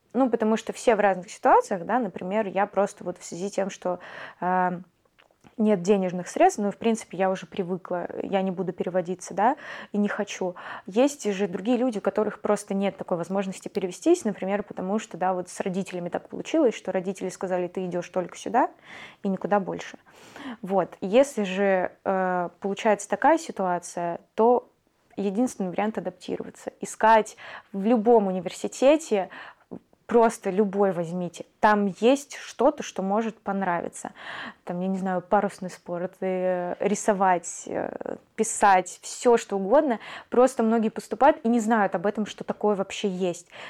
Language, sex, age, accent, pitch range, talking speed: Russian, female, 20-39, native, 185-220 Hz, 155 wpm